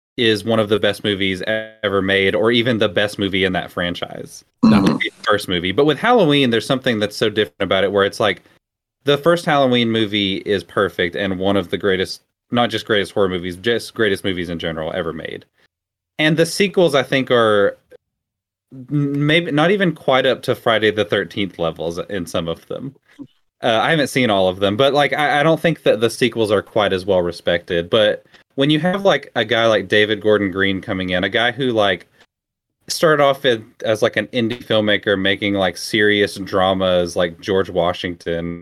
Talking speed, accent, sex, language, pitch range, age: 205 wpm, American, male, English, 95-130 Hz, 20-39